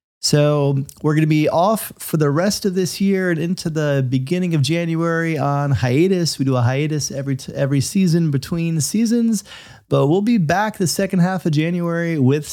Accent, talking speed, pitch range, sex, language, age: American, 190 wpm, 130-165 Hz, male, English, 30-49